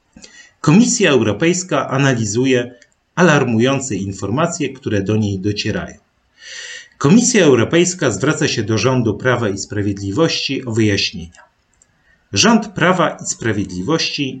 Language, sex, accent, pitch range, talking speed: Polish, male, native, 105-165 Hz, 100 wpm